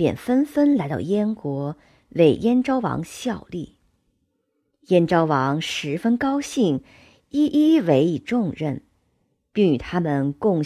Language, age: Chinese, 50-69